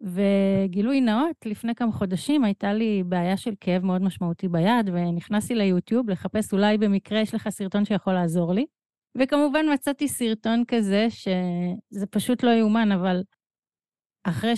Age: 30-49